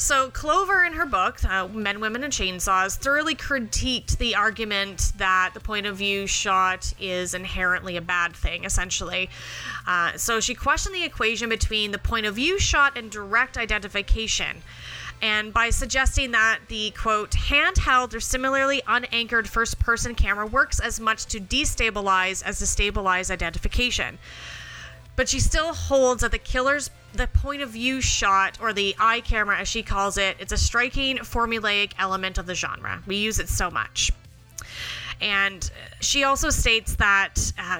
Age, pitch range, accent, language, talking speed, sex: 30-49, 195-250 Hz, American, English, 155 wpm, female